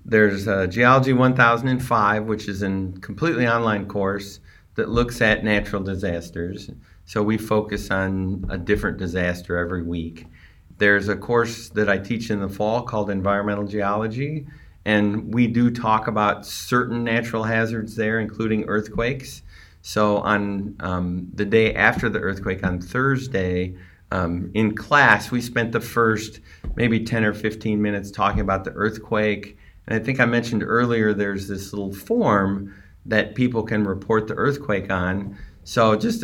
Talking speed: 150 wpm